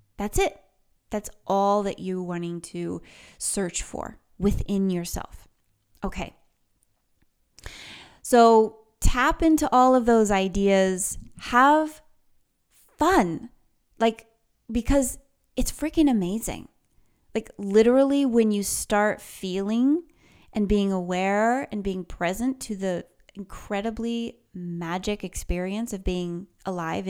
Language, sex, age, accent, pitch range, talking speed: English, female, 20-39, American, 185-230 Hz, 105 wpm